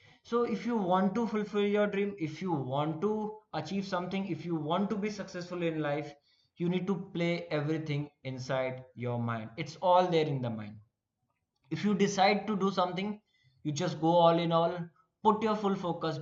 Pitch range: 130-180 Hz